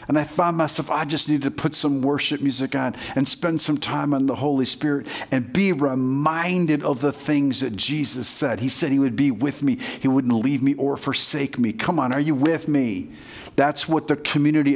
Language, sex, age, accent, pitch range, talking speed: English, male, 50-69, American, 140-170 Hz, 220 wpm